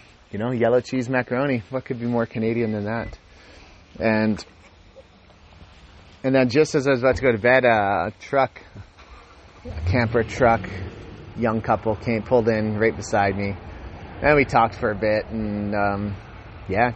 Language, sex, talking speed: English, male, 165 wpm